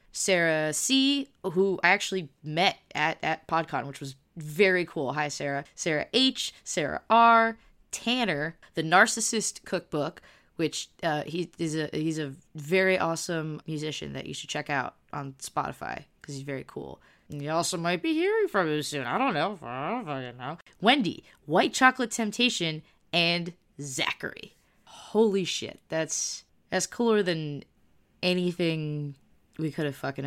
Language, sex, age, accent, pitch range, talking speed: English, female, 20-39, American, 140-185 Hz, 155 wpm